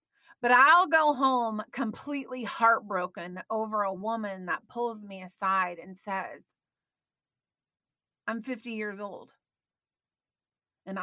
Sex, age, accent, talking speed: female, 30-49, American, 110 wpm